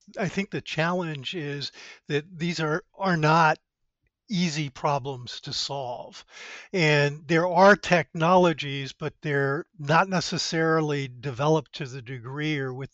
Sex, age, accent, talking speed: male, 50-69, American, 130 wpm